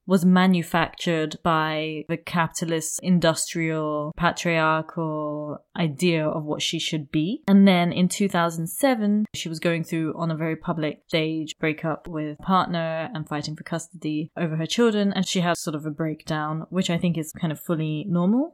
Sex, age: female, 20-39